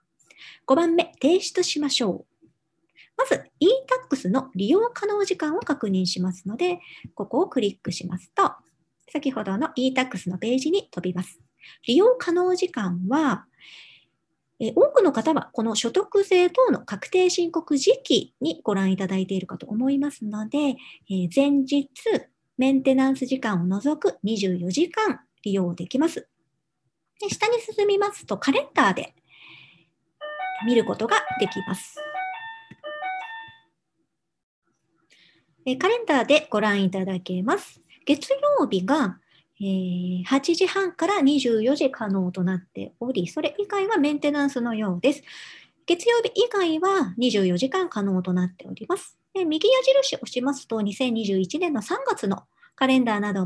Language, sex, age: Japanese, male, 50-69